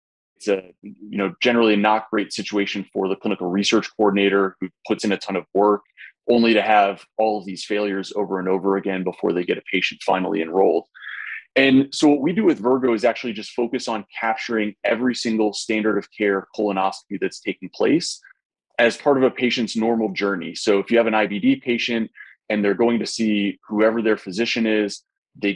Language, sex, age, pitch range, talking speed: English, male, 30-49, 100-120 Hz, 190 wpm